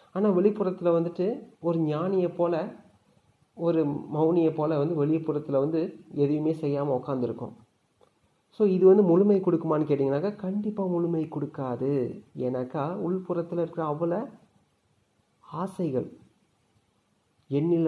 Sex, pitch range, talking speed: male, 130-170 Hz, 100 wpm